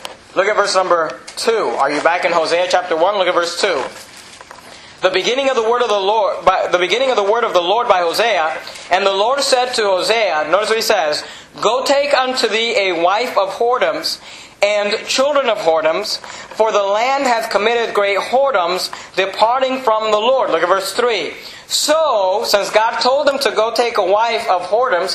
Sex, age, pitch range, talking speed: male, 40-59, 190-255 Hz, 200 wpm